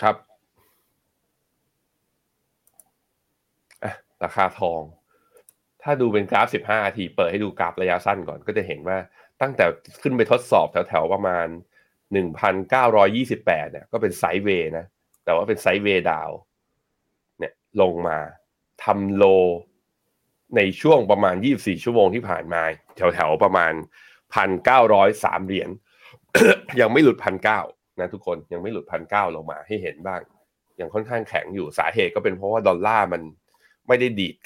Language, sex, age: Thai, male, 20-39